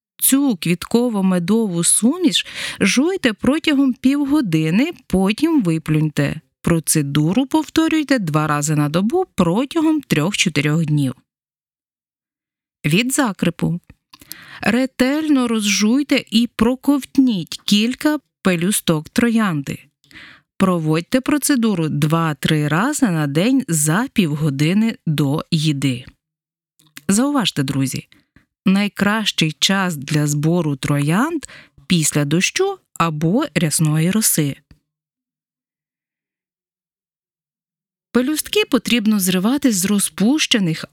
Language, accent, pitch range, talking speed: Ukrainian, native, 155-245 Hz, 80 wpm